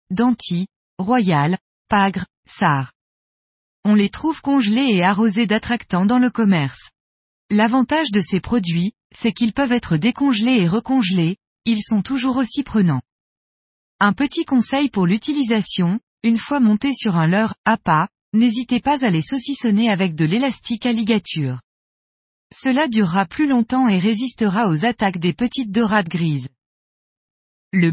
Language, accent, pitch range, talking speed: French, French, 180-245 Hz, 140 wpm